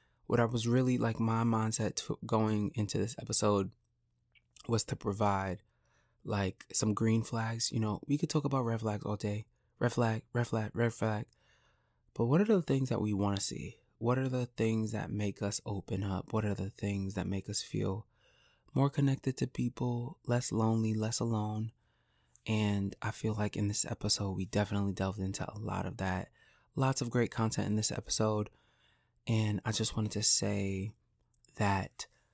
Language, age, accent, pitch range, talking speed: English, 20-39, American, 105-120 Hz, 180 wpm